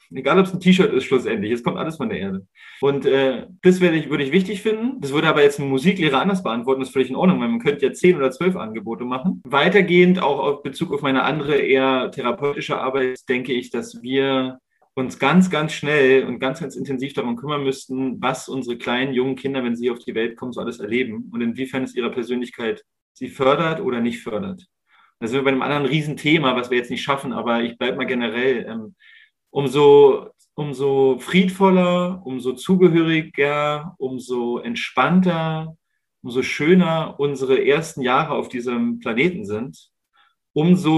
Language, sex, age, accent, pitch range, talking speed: German, male, 30-49, German, 130-180 Hz, 185 wpm